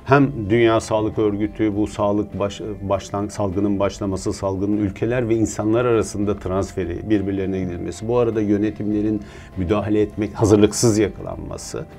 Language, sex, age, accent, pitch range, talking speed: Turkish, male, 50-69, native, 95-110 Hz, 125 wpm